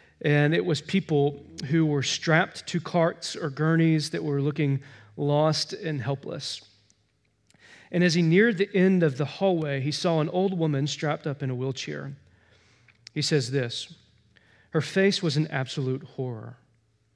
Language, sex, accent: English, male, American